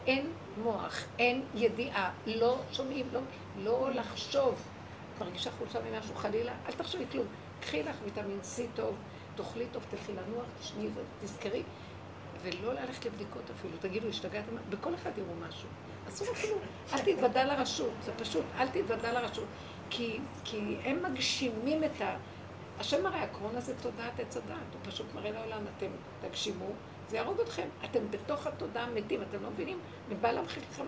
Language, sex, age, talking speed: Hebrew, female, 50-69, 155 wpm